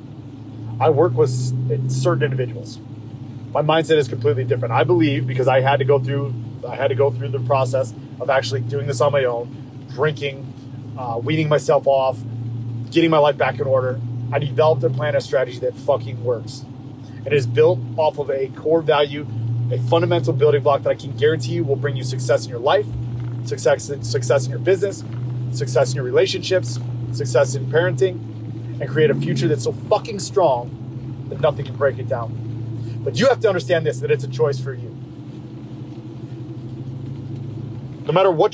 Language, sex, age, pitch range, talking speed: English, male, 30-49, 120-145 Hz, 185 wpm